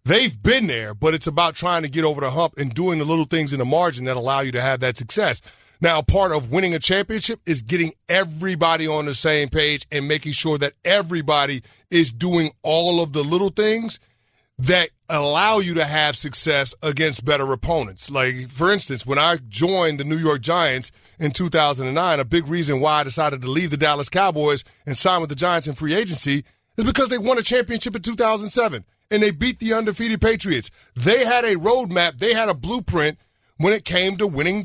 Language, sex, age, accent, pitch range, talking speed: English, male, 30-49, American, 145-190 Hz, 205 wpm